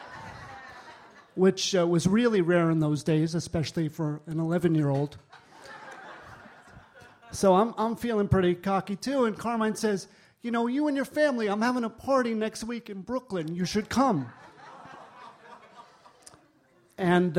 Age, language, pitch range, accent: 40-59, English, 170-215 Hz, American